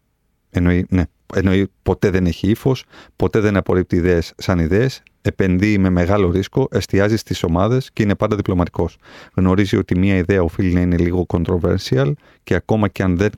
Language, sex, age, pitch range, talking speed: Greek, male, 30-49, 90-110 Hz, 160 wpm